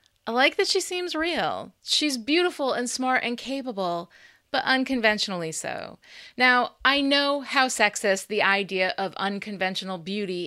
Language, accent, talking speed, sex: English, American, 145 wpm, female